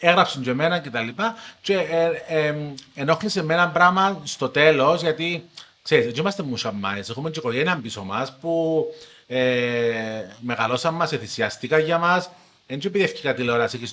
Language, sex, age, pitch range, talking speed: Greek, male, 30-49, 115-170 Hz, 180 wpm